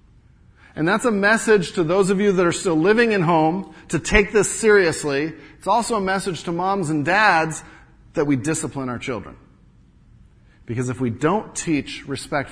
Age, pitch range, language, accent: 40-59, 115-160 Hz, English, American